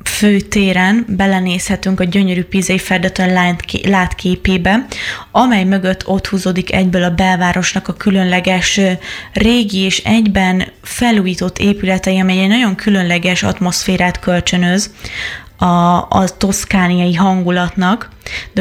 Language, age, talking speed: Hungarian, 20-39, 105 wpm